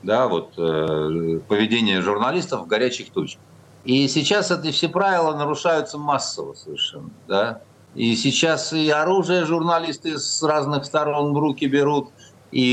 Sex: male